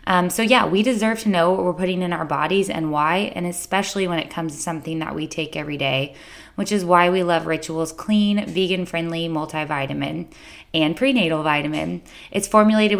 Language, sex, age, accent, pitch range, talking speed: English, female, 20-39, American, 160-195 Hz, 195 wpm